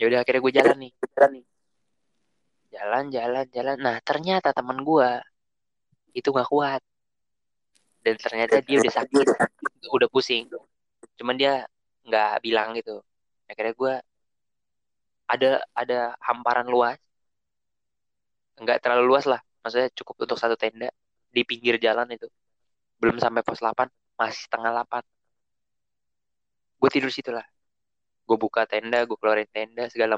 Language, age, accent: Indonesian, 20-39, native